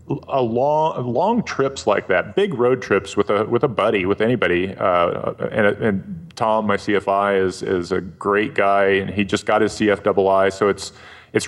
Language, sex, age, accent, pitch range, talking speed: English, male, 30-49, American, 95-115 Hz, 190 wpm